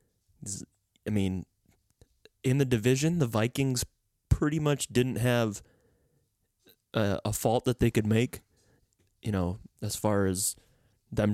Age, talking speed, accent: 20-39, 125 wpm, American